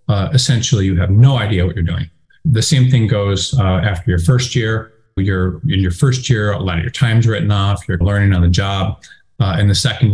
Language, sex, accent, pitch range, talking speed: English, male, American, 100-130 Hz, 230 wpm